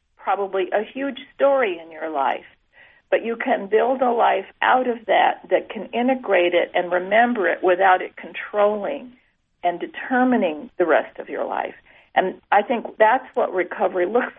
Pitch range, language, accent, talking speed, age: 175-230 Hz, English, American, 165 wpm, 50-69